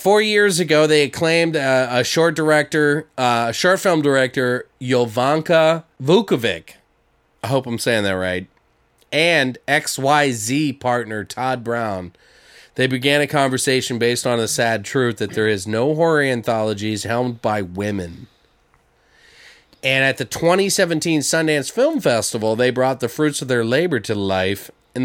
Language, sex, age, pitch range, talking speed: English, male, 30-49, 115-155 Hz, 150 wpm